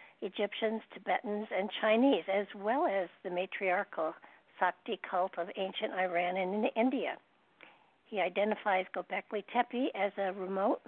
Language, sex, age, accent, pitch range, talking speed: English, female, 60-79, American, 185-220 Hz, 130 wpm